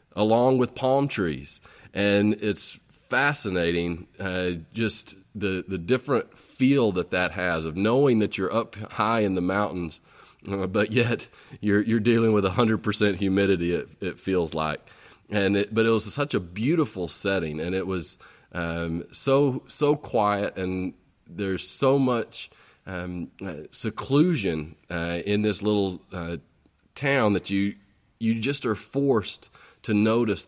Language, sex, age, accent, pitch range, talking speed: English, male, 30-49, American, 90-110 Hz, 150 wpm